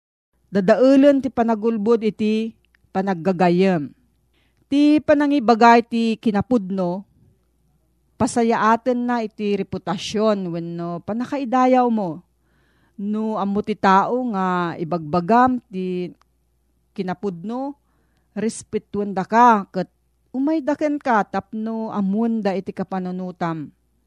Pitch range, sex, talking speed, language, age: 180-230 Hz, female, 85 wpm, Filipino, 40-59